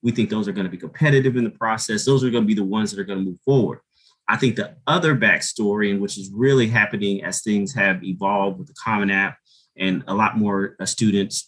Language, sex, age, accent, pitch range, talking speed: English, male, 30-49, American, 100-120 Hz, 245 wpm